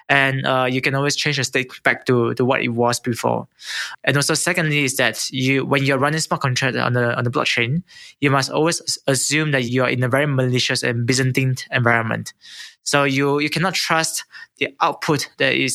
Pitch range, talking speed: 130-150 Hz, 205 wpm